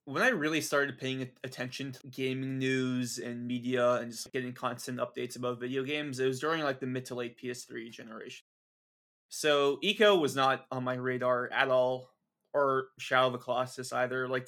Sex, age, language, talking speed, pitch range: male, 20-39, English, 185 wpm, 125-140 Hz